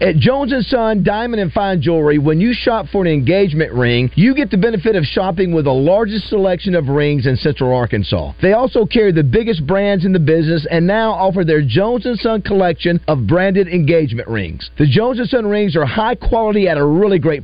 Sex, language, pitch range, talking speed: male, English, 160-220 Hz, 205 wpm